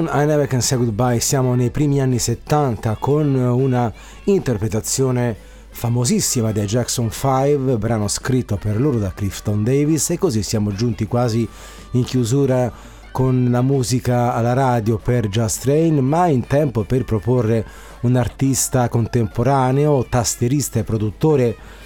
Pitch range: 110-130 Hz